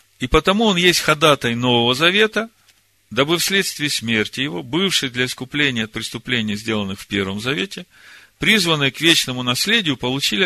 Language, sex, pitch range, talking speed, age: Russian, male, 105-150 Hz, 145 wpm, 40-59